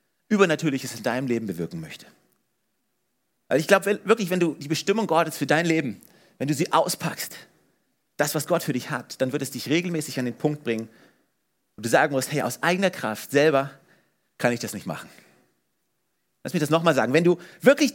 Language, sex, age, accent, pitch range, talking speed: German, male, 40-59, German, 125-175 Hz, 195 wpm